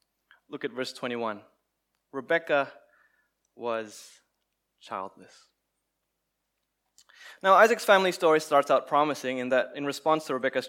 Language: English